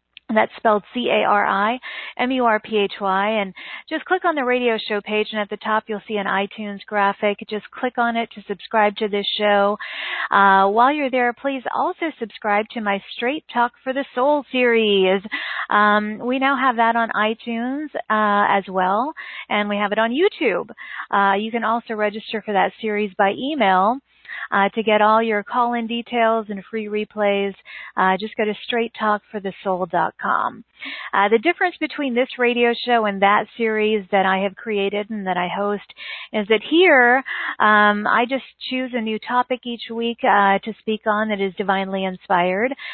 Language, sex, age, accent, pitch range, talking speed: English, female, 40-59, American, 205-240 Hz, 175 wpm